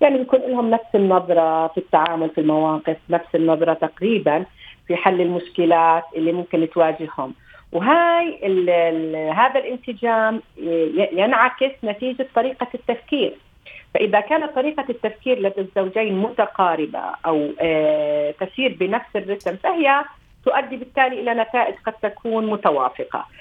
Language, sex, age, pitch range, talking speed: Arabic, female, 40-59, 175-230 Hz, 115 wpm